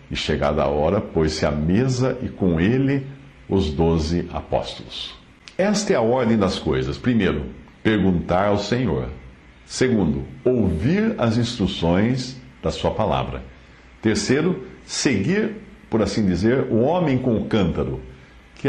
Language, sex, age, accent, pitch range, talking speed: English, male, 60-79, Brazilian, 75-125 Hz, 130 wpm